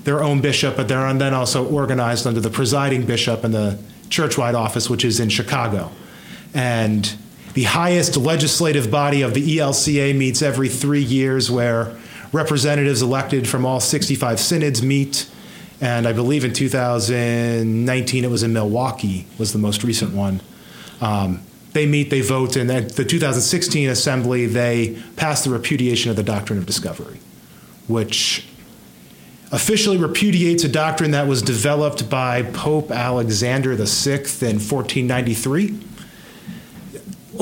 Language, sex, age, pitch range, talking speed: English, male, 30-49, 115-150 Hz, 140 wpm